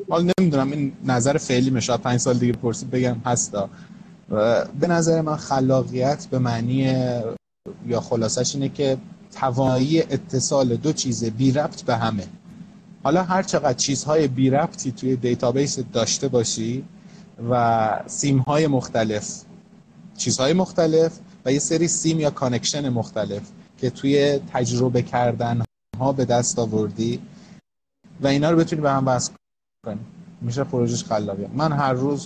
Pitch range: 125-165 Hz